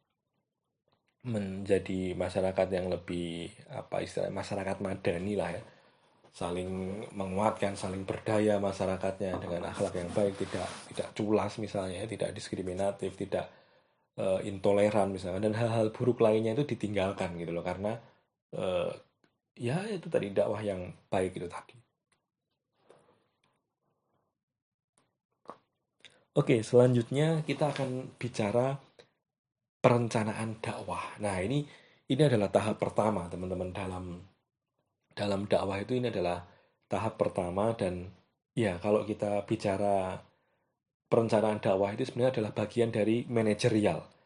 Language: Indonesian